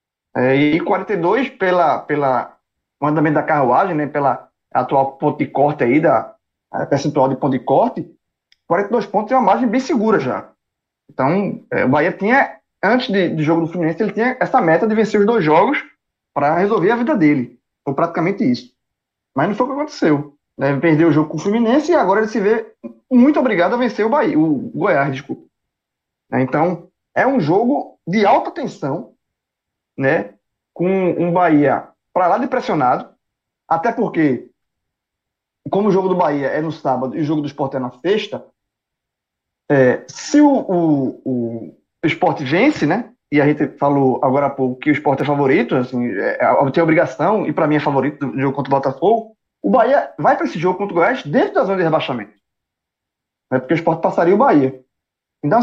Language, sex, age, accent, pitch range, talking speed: Portuguese, male, 20-39, Brazilian, 140-215 Hz, 190 wpm